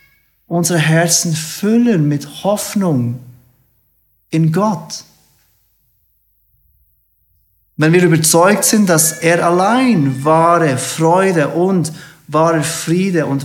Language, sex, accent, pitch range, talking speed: German, male, German, 125-165 Hz, 90 wpm